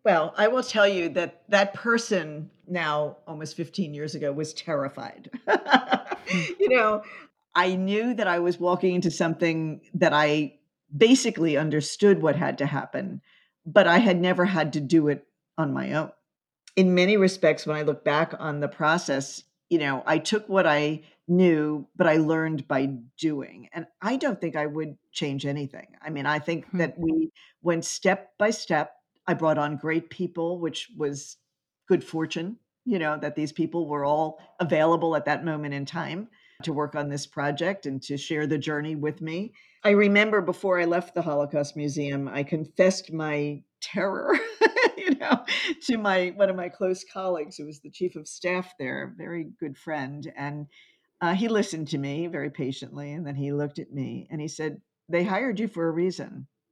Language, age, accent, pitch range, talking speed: English, 50-69, American, 150-185 Hz, 185 wpm